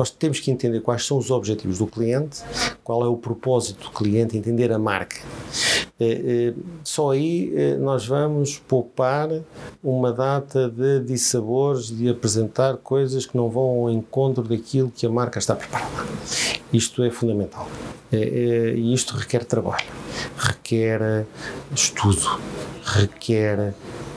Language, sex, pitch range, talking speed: Portuguese, male, 115-130 Hz, 130 wpm